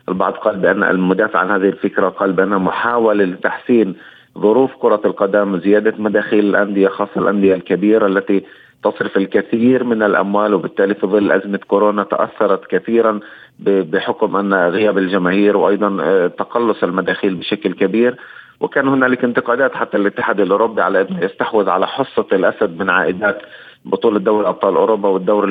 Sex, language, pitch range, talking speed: male, Arabic, 95-120 Hz, 140 wpm